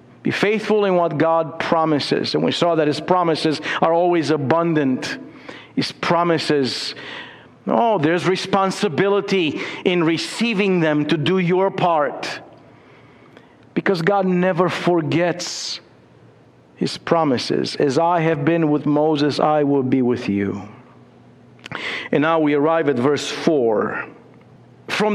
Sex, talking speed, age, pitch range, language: male, 125 wpm, 50-69, 150-190 Hz, English